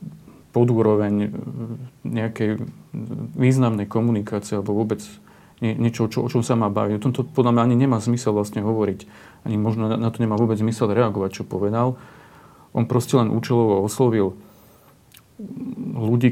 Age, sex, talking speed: 40-59, male, 140 wpm